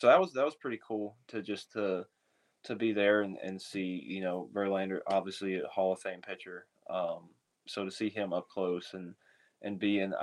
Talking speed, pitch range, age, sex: 215 wpm, 95-105 Hz, 20-39, male